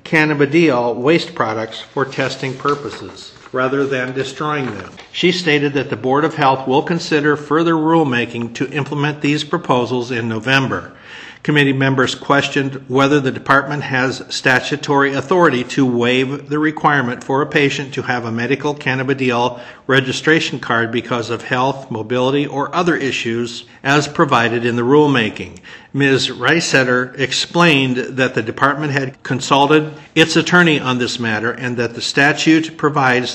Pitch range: 125-150 Hz